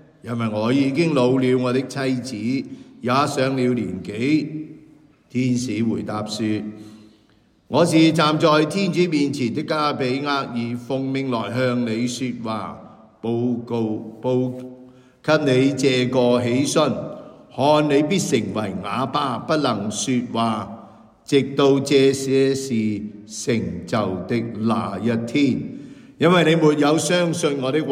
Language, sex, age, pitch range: English, male, 50-69, 115-145 Hz